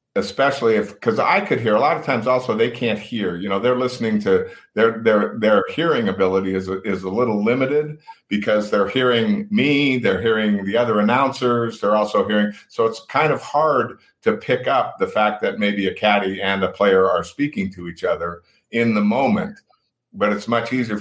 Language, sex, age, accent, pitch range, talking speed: English, male, 50-69, American, 95-115 Hz, 200 wpm